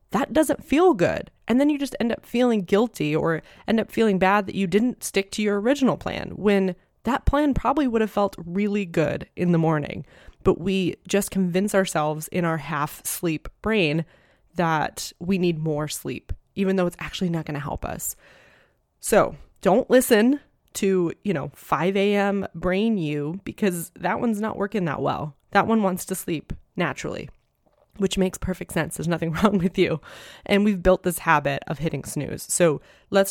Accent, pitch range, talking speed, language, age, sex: American, 160-195 Hz, 185 wpm, English, 20-39, female